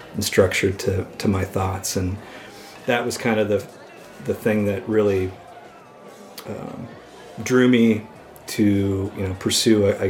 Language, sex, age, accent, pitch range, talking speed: English, male, 40-59, American, 95-110 Hz, 145 wpm